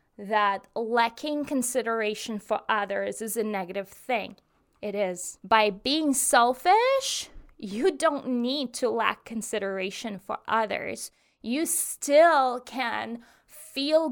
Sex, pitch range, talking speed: female, 220-275 Hz, 110 wpm